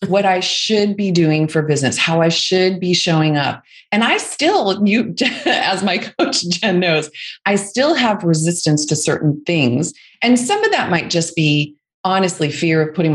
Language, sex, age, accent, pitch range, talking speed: English, female, 30-49, American, 160-230 Hz, 185 wpm